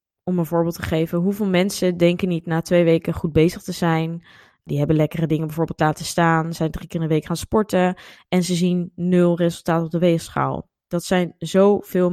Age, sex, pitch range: 20-39, female, 165-195 Hz